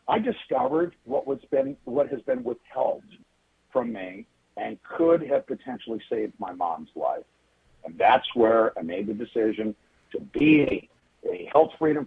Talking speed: 155 wpm